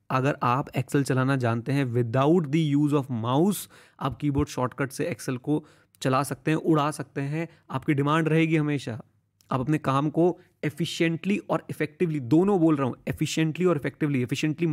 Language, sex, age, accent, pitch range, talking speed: Hindi, male, 30-49, native, 120-155 Hz, 170 wpm